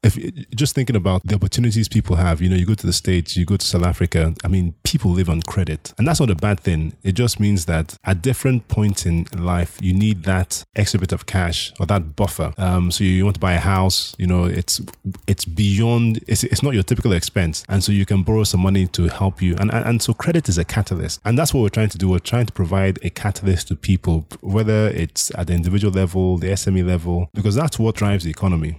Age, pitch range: 20-39, 85-105 Hz